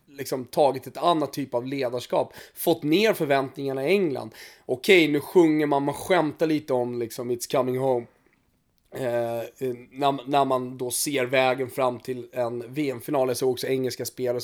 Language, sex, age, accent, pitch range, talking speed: Swedish, male, 20-39, native, 125-145 Hz, 170 wpm